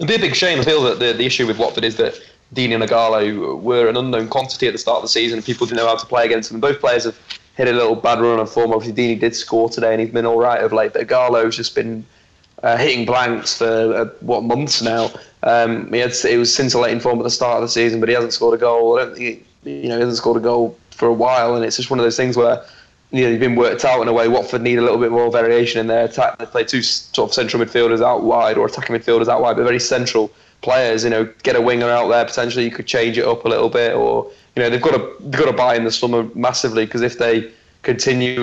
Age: 20-39